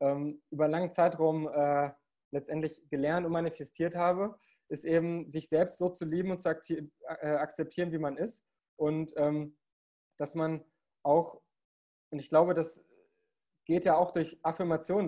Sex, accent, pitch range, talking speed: male, German, 155-180 Hz, 155 wpm